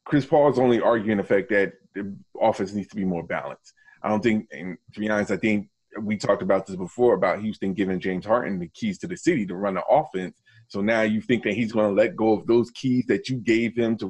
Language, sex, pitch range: English, male, 100-125 Hz